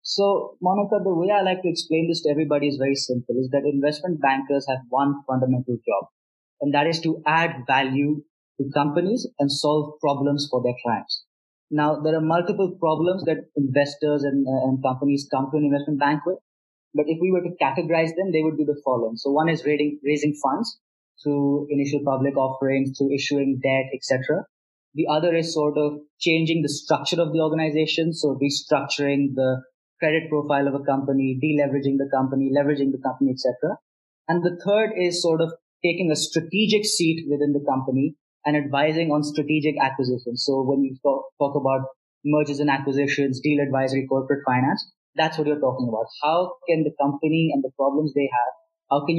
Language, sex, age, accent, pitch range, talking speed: English, male, 20-39, Indian, 135-160 Hz, 185 wpm